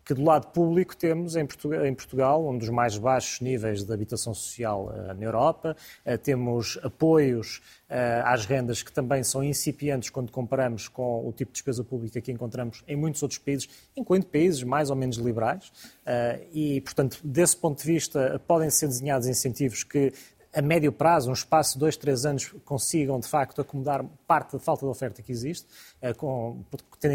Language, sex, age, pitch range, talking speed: Portuguese, male, 20-39, 125-165 Hz, 170 wpm